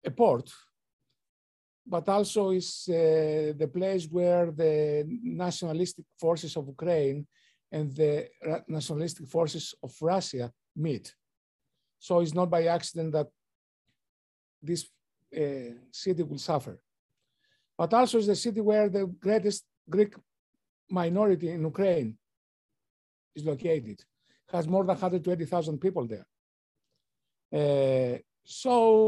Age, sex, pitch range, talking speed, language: 60-79, male, 150-195 Hz, 110 wpm, English